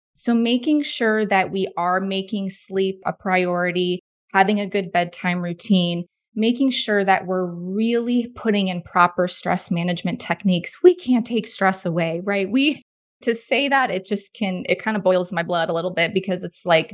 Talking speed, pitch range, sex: 180 wpm, 175-215 Hz, female